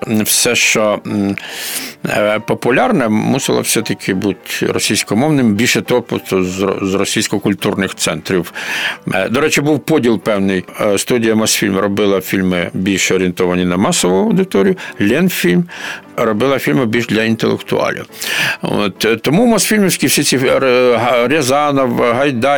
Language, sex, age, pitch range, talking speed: Ukrainian, male, 50-69, 115-165 Hz, 105 wpm